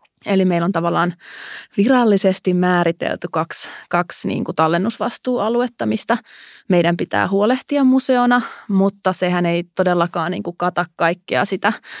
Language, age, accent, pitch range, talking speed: Finnish, 30-49, native, 170-200 Hz, 105 wpm